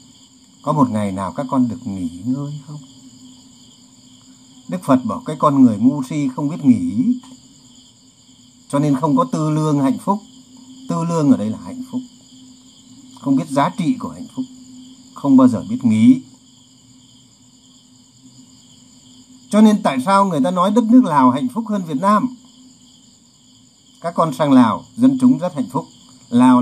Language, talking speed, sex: Vietnamese, 165 wpm, male